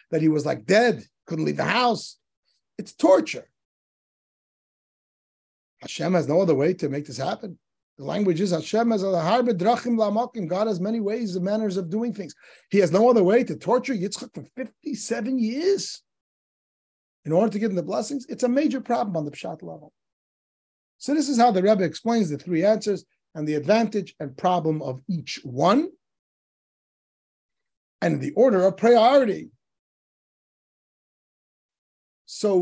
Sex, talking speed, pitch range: male, 160 wpm, 165-225 Hz